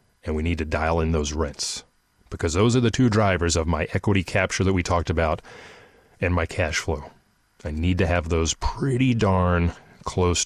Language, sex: English, male